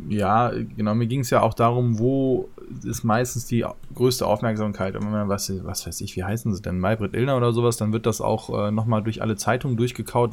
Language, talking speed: German, 225 wpm